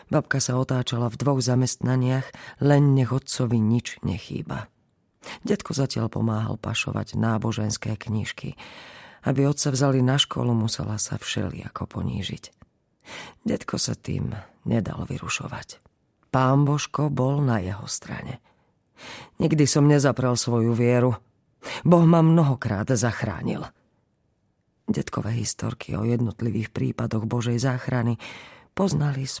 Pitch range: 115-145 Hz